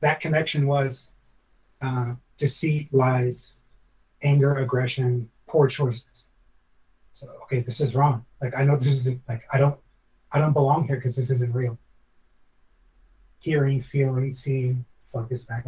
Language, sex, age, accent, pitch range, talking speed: English, male, 30-49, American, 125-145 Hz, 140 wpm